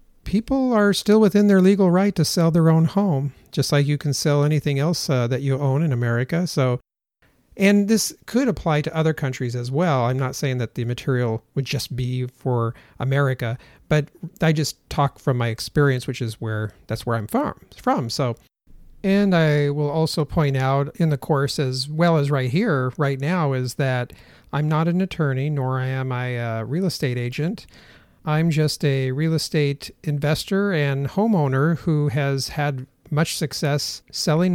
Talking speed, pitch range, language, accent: 180 wpm, 130-160 Hz, English, American